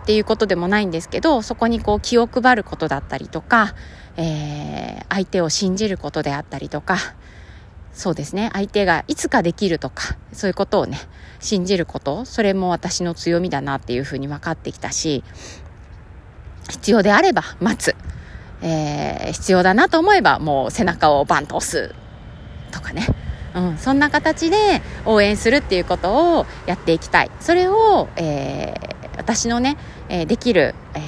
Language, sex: Japanese, female